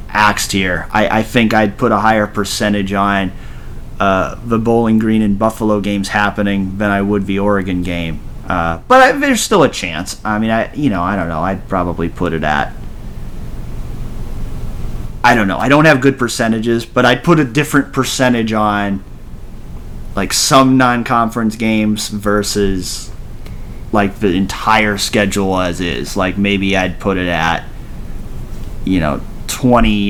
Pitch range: 95-115 Hz